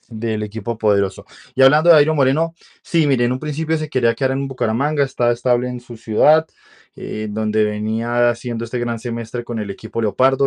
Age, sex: 20-39, male